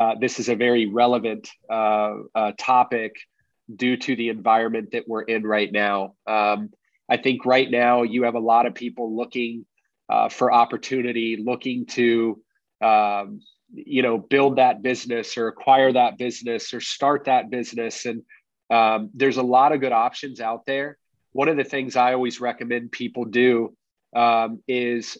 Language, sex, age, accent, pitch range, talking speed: English, male, 30-49, American, 115-135 Hz, 160 wpm